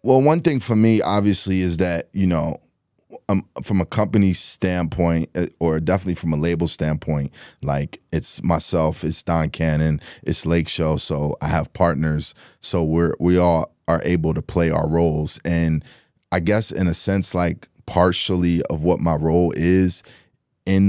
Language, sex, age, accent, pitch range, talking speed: English, male, 30-49, American, 80-100 Hz, 165 wpm